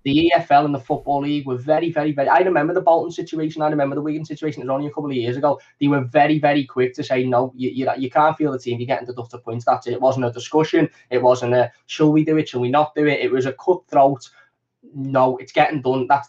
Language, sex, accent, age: English, male, British, 10-29